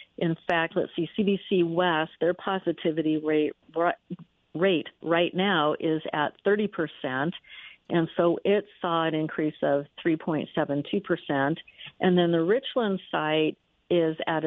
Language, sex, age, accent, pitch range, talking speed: English, female, 50-69, American, 155-180 Hz, 130 wpm